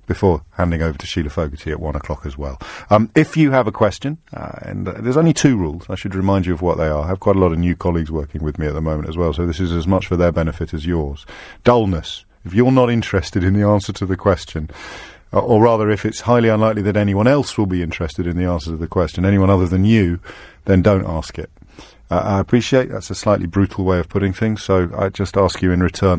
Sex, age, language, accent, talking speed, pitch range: male, 50-69, English, British, 260 wpm, 85-105 Hz